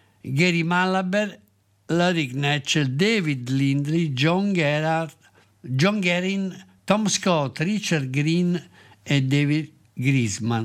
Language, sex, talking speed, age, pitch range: Italian, male, 95 wpm, 60-79, 130-165 Hz